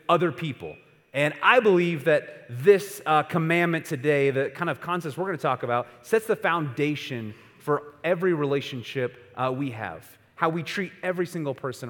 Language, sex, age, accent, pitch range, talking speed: English, male, 30-49, American, 130-180 Hz, 170 wpm